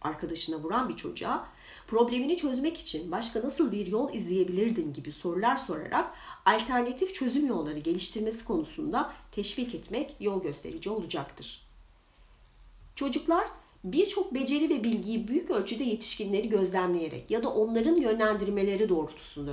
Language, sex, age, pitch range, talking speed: Turkish, female, 40-59, 180-275 Hz, 120 wpm